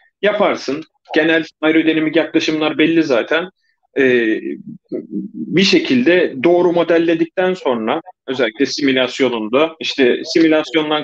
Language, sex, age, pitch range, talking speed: Turkish, male, 40-59, 135-195 Hz, 85 wpm